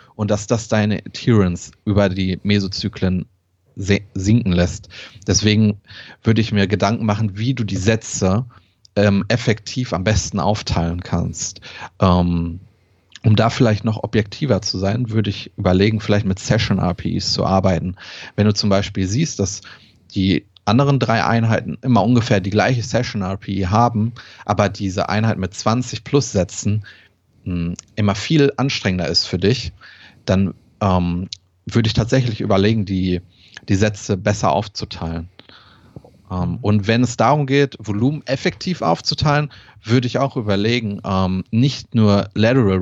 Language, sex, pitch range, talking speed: German, male, 95-115 Hz, 140 wpm